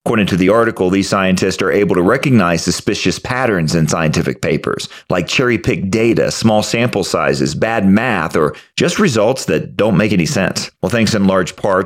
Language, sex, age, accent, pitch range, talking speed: English, male, 40-59, American, 100-150 Hz, 180 wpm